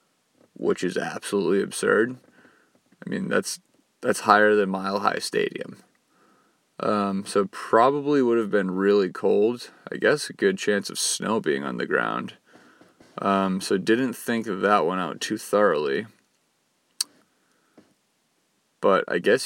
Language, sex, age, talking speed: English, male, 20-39, 140 wpm